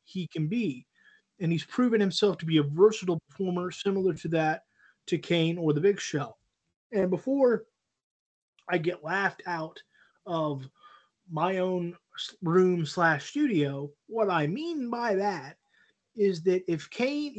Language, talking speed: English, 145 wpm